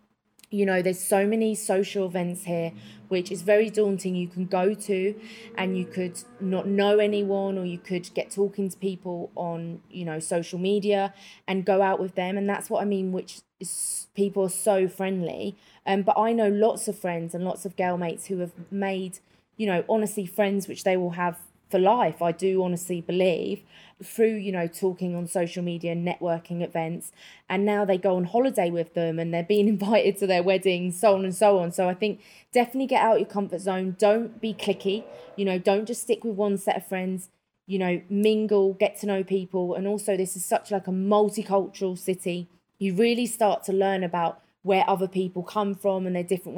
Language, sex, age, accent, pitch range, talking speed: English, female, 20-39, British, 180-205 Hz, 205 wpm